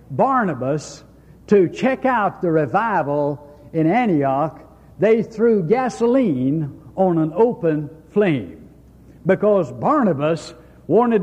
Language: English